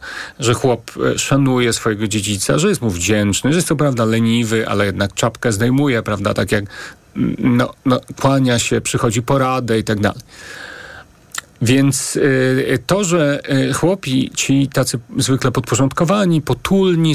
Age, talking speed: 40-59, 140 wpm